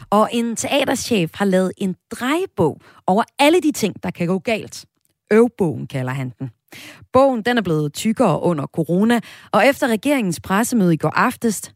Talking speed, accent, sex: 170 wpm, native, female